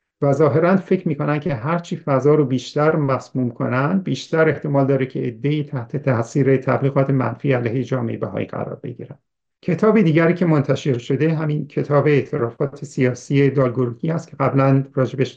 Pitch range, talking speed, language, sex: 130-155 Hz, 150 wpm, Persian, male